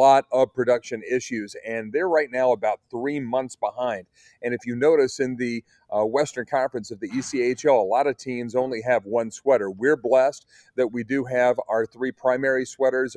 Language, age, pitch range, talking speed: English, 40-59, 115-140 Hz, 190 wpm